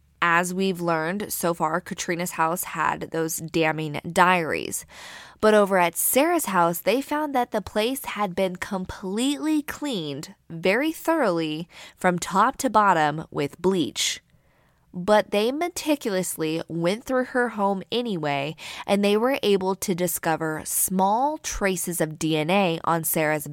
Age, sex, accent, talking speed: 20-39, female, American, 135 wpm